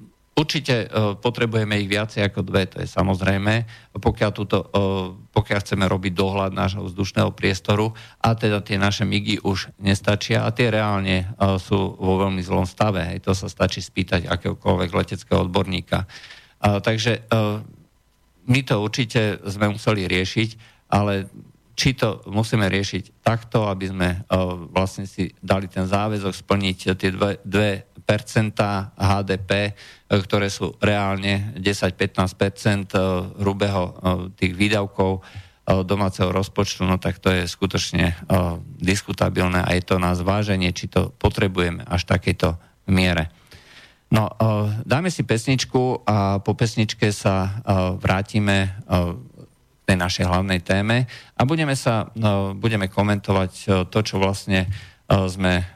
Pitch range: 95-105 Hz